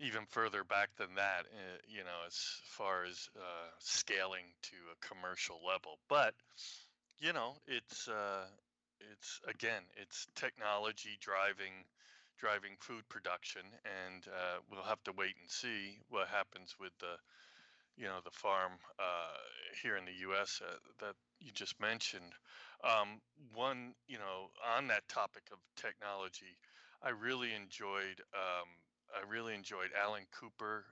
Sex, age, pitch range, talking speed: male, 20-39, 90-110 Hz, 140 wpm